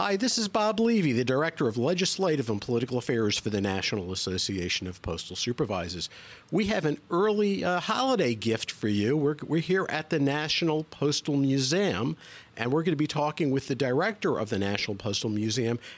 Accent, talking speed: American, 190 wpm